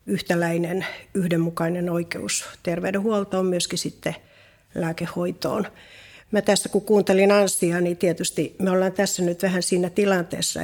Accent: native